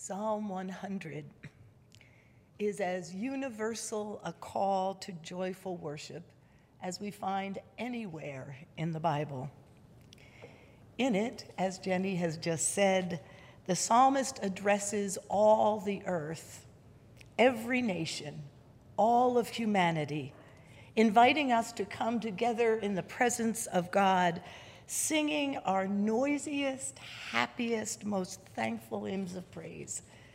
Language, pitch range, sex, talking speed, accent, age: English, 150-220 Hz, female, 105 wpm, American, 60-79